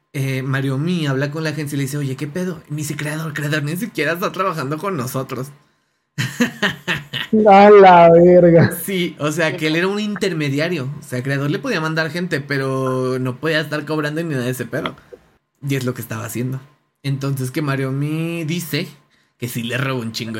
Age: 20-39